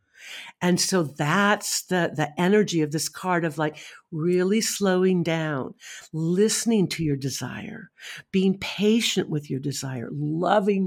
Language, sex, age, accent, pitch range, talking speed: English, female, 60-79, American, 155-205 Hz, 135 wpm